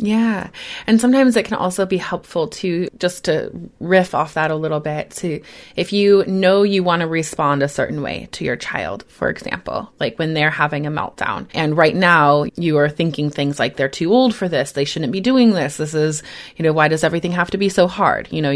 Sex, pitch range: female, 145-185 Hz